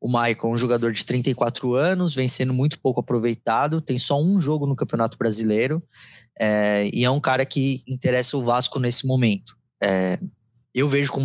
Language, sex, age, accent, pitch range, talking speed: Portuguese, male, 20-39, Brazilian, 115-150 Hz, 175 wpm